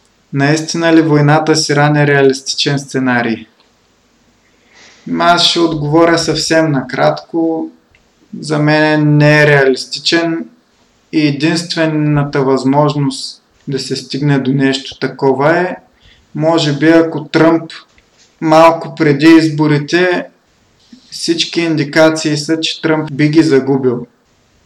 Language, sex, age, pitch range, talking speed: Bulgarian, male, 20-39, 130-155 Hz, 100 wpm